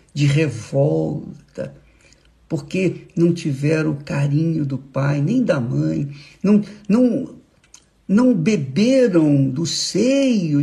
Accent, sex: Brazilian, male